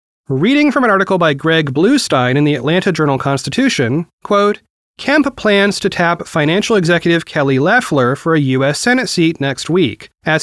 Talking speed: 160 wpm